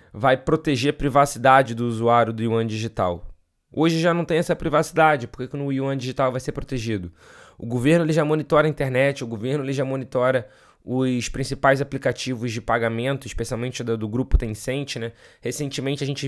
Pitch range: 120-155 Hz